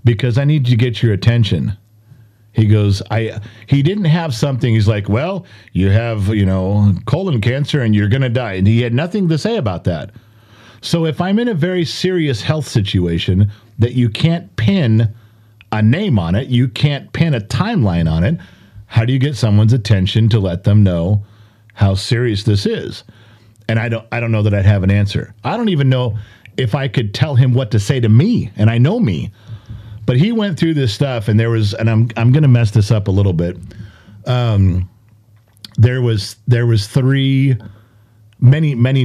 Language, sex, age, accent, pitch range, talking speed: English, male, 40-59, American, 105-130 Hz, 200 wpm